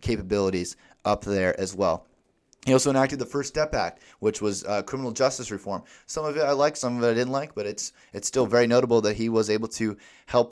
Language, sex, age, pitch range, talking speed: English, male, 30-49, 100-125 Hz, 235 wpm